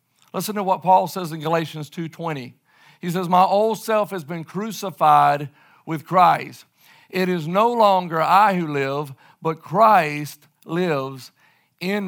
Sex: male